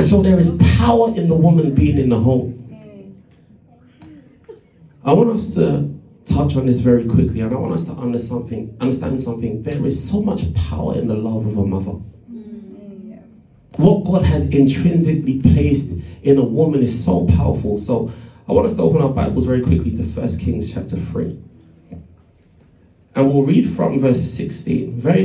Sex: male